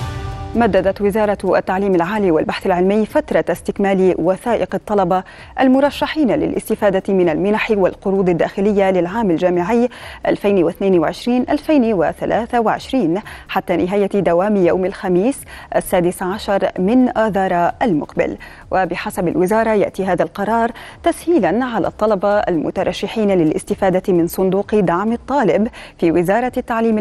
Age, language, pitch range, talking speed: 20-39, Arabic, 185-225 Hz, 100 wpm